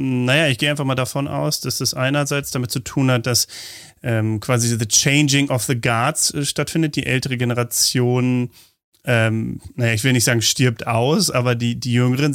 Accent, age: German, 30-49